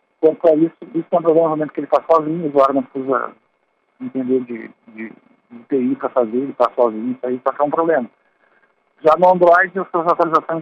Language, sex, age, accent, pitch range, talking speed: Portuguese, male, 50-69, Brazilian, 130-165 Hz, 200 wpm